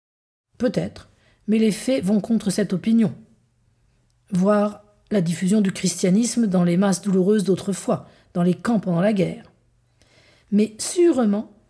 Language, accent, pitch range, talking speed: French, French, 200-260 Hz, 135 wpm